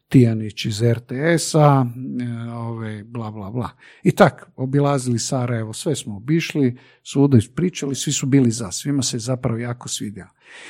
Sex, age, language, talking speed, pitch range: male, 50-69, Croatian, 145 wpm, 115-150 Hz